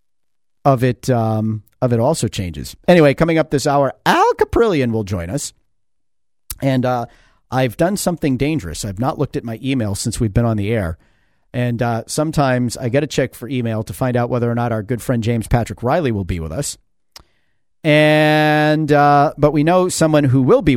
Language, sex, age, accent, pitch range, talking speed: English, male, 50-69, American, 115-145 Hz, 200 wpm